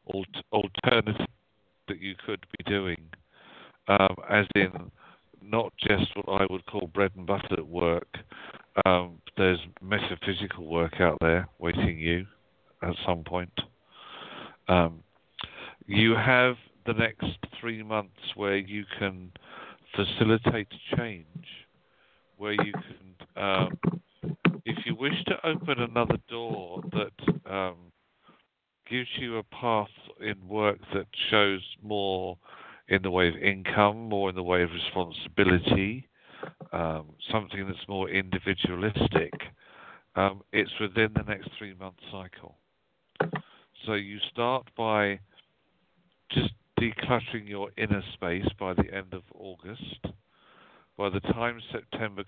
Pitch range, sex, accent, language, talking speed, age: 90-110 Hz, male, British, English, 120 wpm, 50-69